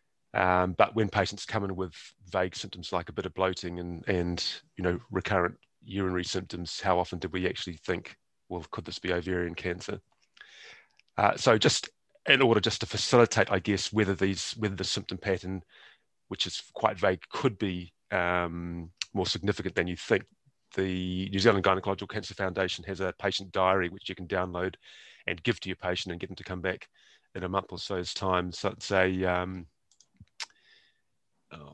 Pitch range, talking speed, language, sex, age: 90-100 Hz, 185 wpm, English, male, 30-49